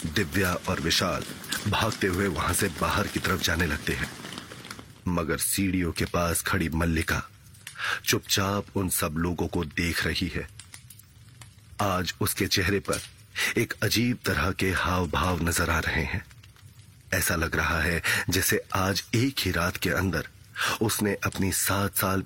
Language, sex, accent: Hindi, male, native